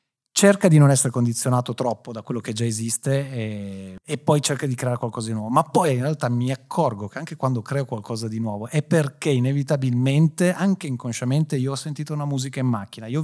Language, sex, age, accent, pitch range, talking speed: Italian, male, 30-49, native, 120-150 Hz, 215 wpm